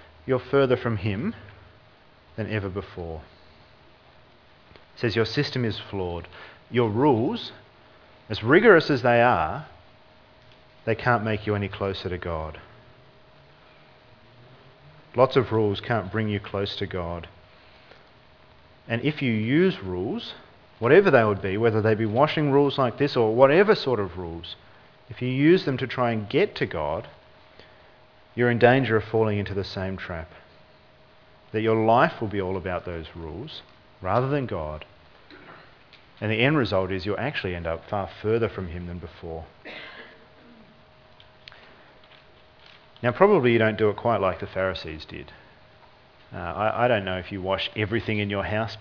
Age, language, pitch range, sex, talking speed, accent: 40-59, English, 95-120 Hz, male, 155 wpm, Australian